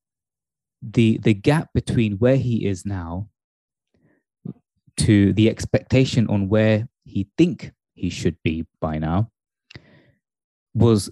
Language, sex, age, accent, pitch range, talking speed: English, male, 20-39, British, 90-115 Hz, 115 wpm